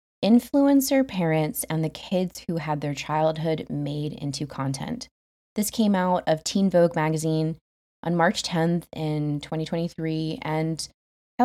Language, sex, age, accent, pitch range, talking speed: English, female, 20-39, American, 155-220 Hz, 125 wpm